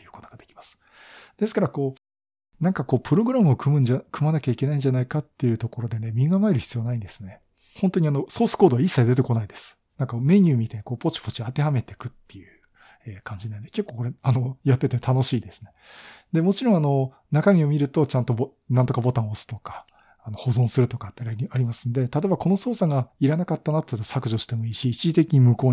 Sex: male